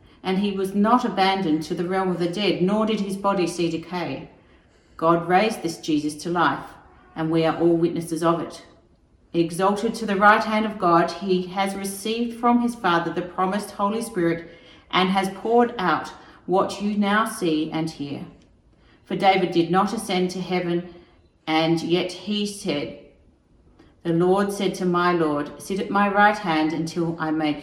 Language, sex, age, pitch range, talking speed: English, female, 40-59, 160-195 Hz, 180 wpm